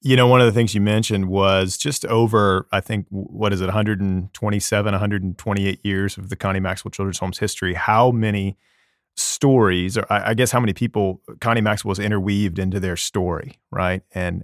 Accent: American